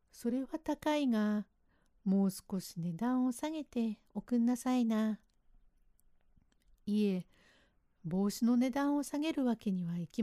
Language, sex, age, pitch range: Japanese, female, 60-79, 195-260 Hz